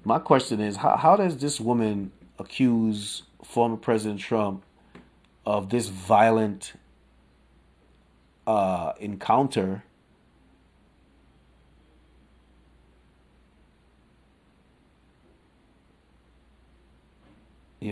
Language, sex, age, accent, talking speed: English, male, 40-59, American, 60 wpm